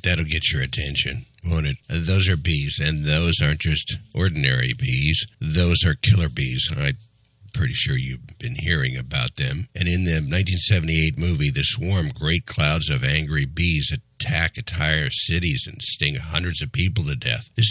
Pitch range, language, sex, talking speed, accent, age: 80-130 Hz, English, male, 170 wpm, American, 60-79